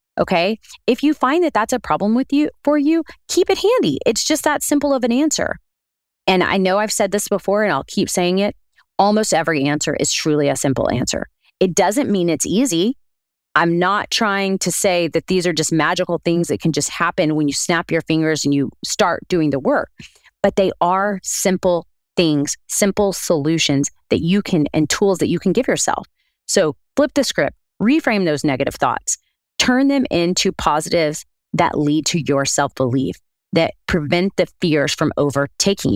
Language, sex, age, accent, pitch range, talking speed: English, female, 30-49, American, 155-220 Hz, 190 wpm